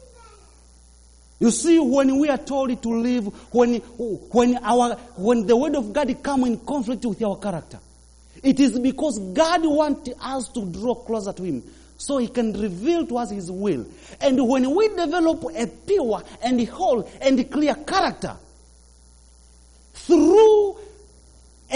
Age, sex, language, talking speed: 40-59, male, English, 145 wpm